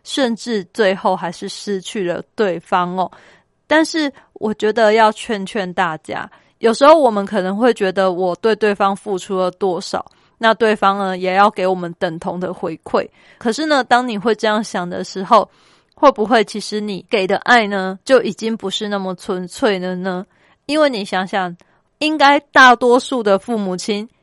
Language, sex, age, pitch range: Chinese, female, 20-39, 190-230 Hz